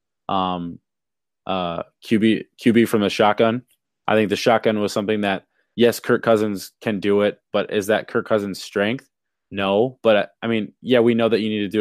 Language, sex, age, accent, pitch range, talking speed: English, male, 20-39, American, 95-110 Hz, 195 wpm